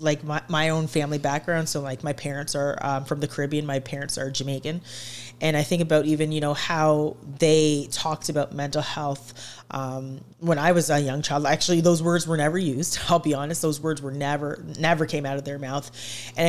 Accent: American